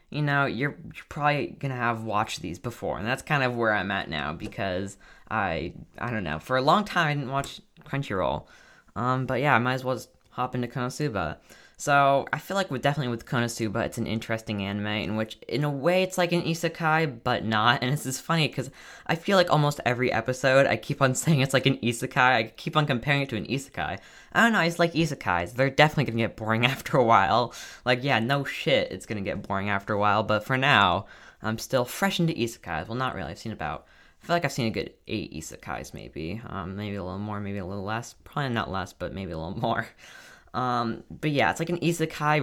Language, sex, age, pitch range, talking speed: English, female, 10-29, 110-145 Hz, 235 wpm